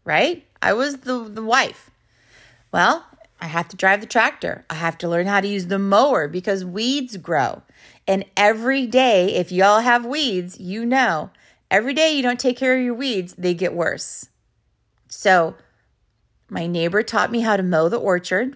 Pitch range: 175-235 Hz